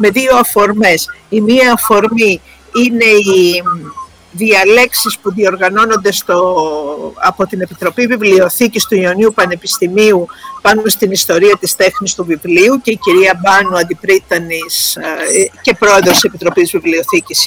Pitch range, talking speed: 190-245 Hz, 120 wpm